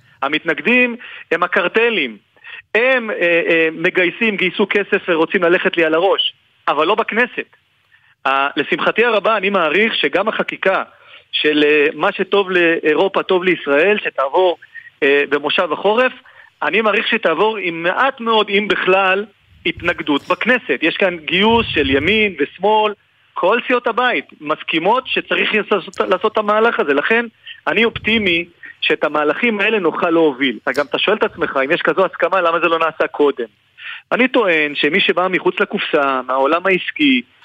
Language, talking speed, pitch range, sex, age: Hebrew, 150 wpm, 160-230 Hz, male, 40-59